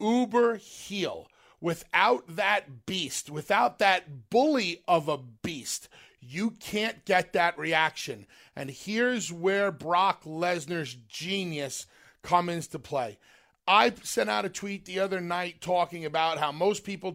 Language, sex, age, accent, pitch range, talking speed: English, male, 40-59, American, 160-200 Hz, 135 wpm